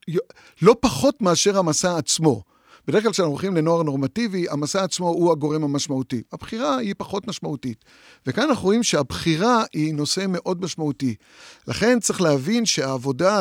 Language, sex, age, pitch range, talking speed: Hebrew, male, 50-69, 140-190 Hz, 145 wpm